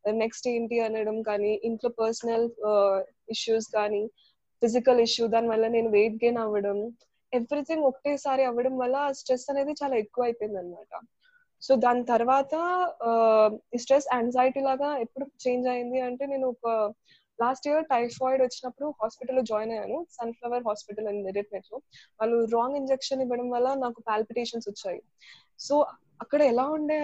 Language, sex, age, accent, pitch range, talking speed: Telugu, female, 20-39, native, 220-260 Hz, 140 wpm